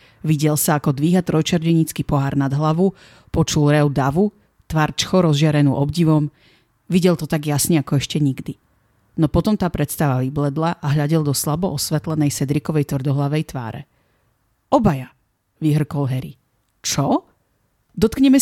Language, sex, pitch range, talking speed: Slovak, female, 140-190 Hz, 130 wpm